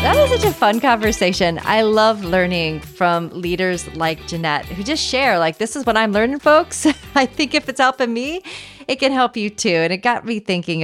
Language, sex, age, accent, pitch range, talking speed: English, female, 30-49, American, 165-230 Hz, 215 wpm